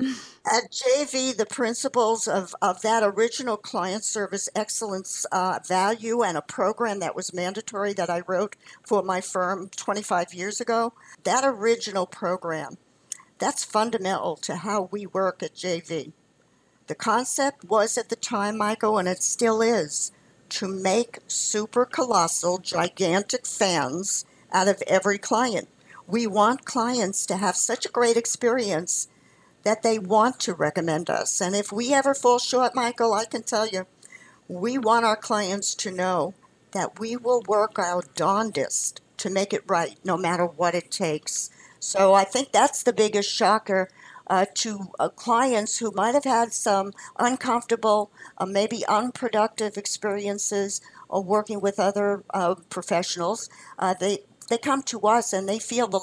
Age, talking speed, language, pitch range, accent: 60-79, 155 wpm, English, 190-230 Hz, American